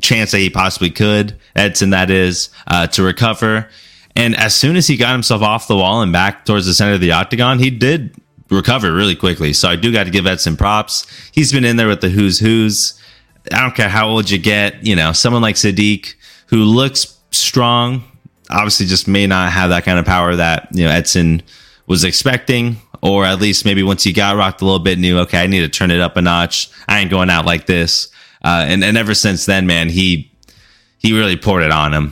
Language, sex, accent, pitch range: English, male, American, 85-105 Hz